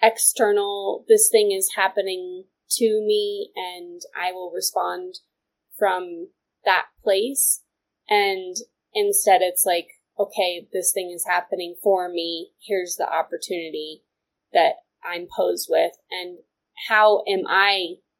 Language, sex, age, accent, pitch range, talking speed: English, female, 20-39, American, 190-250 Hz, 120 wpm